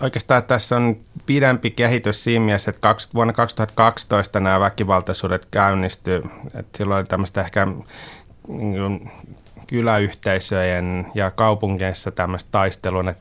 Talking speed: 115 wpm